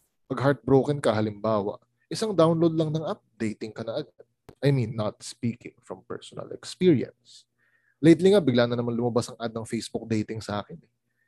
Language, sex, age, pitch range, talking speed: Filipino, male, 20-39, 115-195 Hz, 170 wpm